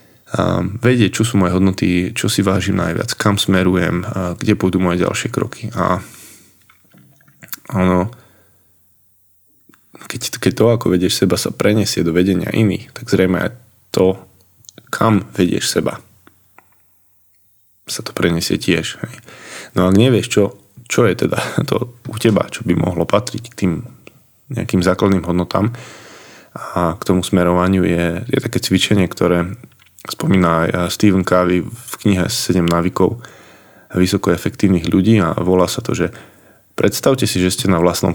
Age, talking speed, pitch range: 20-39, 140 wpm, 90-110 Hz